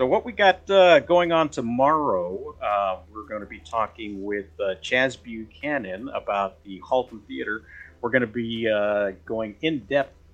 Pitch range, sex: 90-115 Hz, male